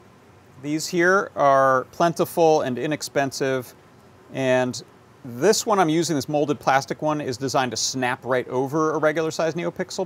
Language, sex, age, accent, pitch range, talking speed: English, male, 40-59, American, 120-150 Hz, 150 wpm